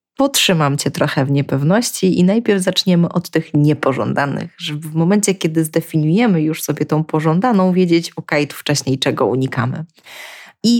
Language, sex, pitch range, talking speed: Polish, female, 150-195 Hz, 155 wpm